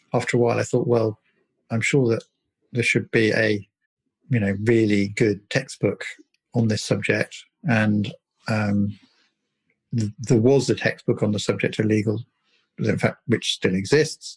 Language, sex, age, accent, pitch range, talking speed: English, male, 50-69, British, 110-130 Hz, 160 wpm